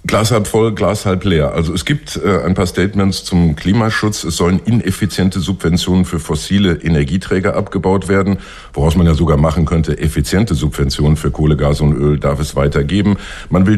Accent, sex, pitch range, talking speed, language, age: German, male, 75-95 Hz, 185 wpm, English, 50-69